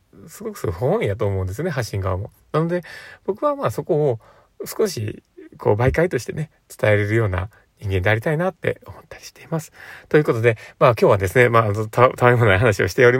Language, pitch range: Japanese, 105-150 Hz